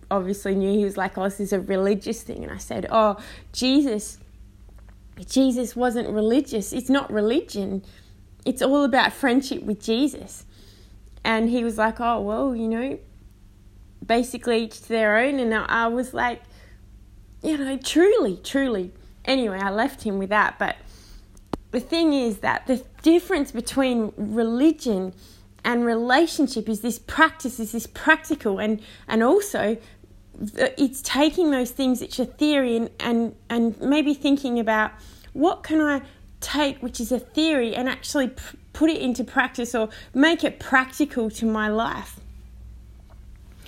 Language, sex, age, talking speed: English, female, 20-39, 150 wpm